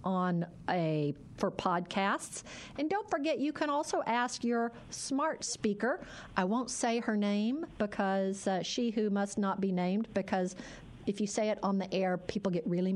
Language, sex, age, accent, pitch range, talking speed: English, female, 50-69, American, 195-255 Hz, 175 wpm